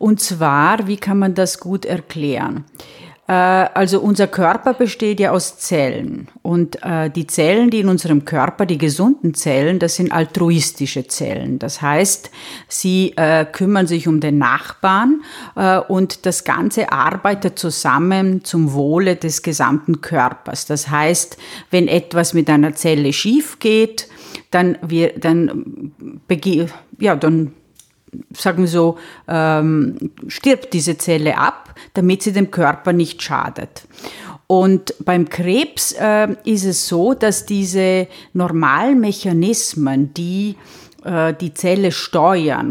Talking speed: 125 wpm